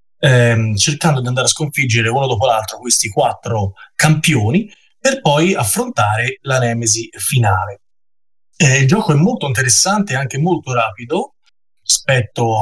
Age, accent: 20-39, native